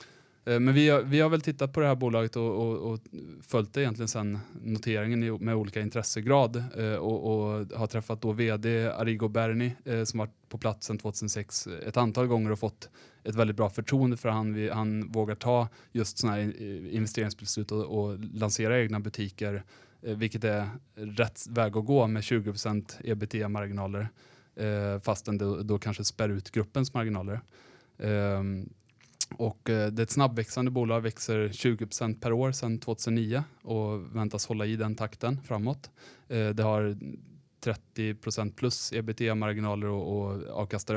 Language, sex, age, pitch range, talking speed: Swedish, male, 20-39, 105-115 Hz, 150 wpm